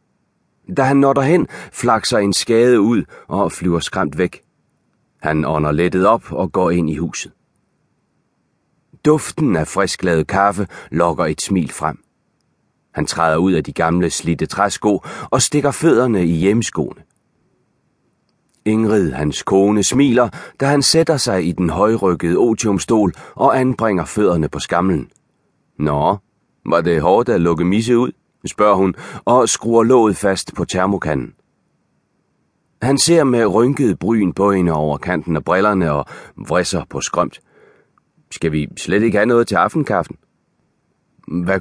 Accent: native